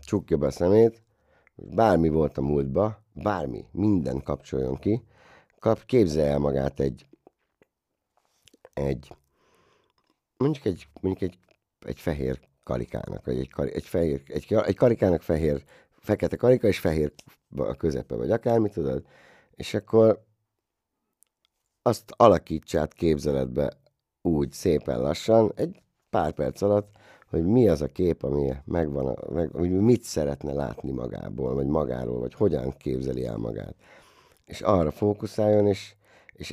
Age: 60-79